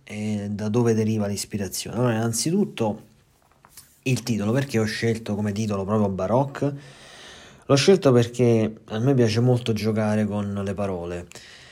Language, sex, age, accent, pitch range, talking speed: Italian, male, 30-49, native, 100-120 Hz, 140 wpm